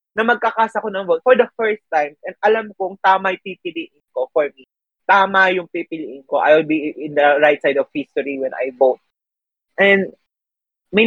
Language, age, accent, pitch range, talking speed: Filipino, 20-39, native, 140-185 Hz, 190 wpm